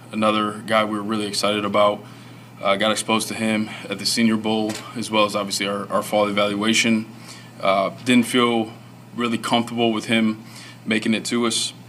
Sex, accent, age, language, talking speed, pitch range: male, American, 20-39, English, 175 wpm, 100-115 Hz